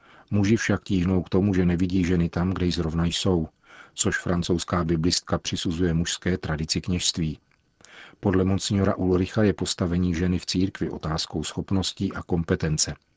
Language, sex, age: Czech, male, 40-59